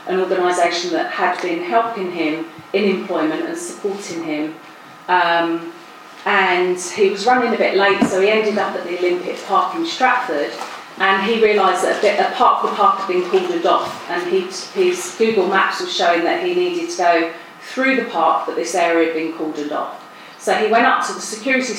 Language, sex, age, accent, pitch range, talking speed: English, female, 40-59, British, 175-230 Hz, 200 wpm